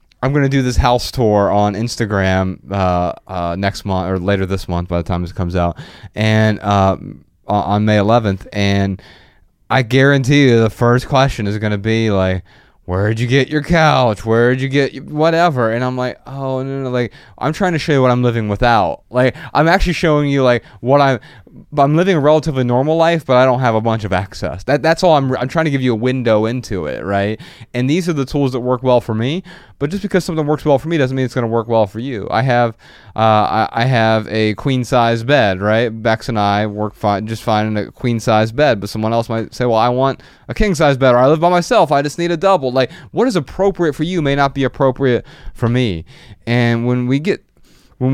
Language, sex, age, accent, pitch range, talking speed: English, male, 20-39, American, 105-140 Hz, 235 wpm